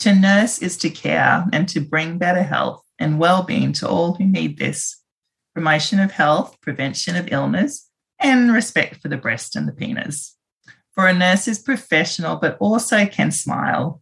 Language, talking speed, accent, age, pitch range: English, 170 wpm, Australian, 40-59, 145-195 Hz